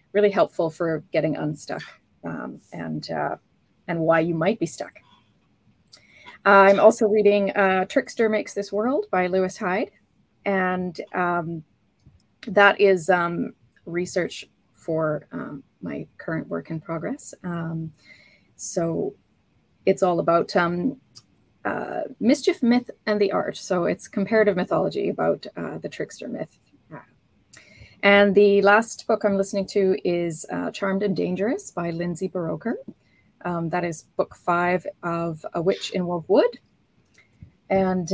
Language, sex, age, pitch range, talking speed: English, female, 30-49, 170-205 Hz, 135 wpm